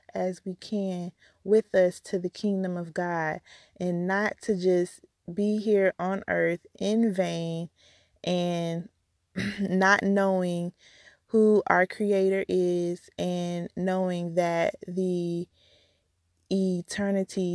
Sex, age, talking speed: female, 20-39, 110 wpm